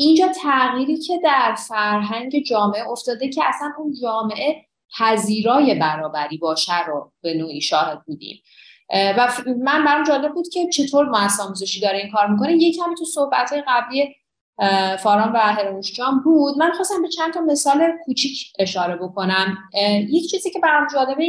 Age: 30-49